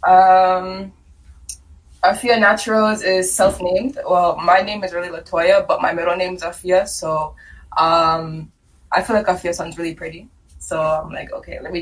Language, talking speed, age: English, 160 wpm, 20-39